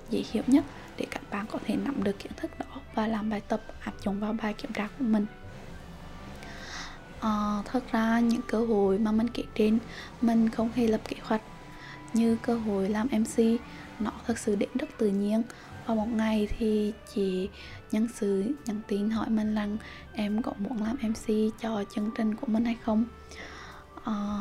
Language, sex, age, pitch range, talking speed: Vietnamese, female, 10-29, 205-235 Hz, 190 wpm